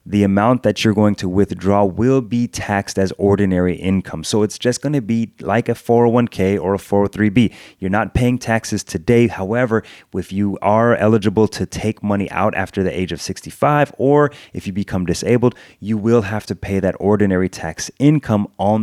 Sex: male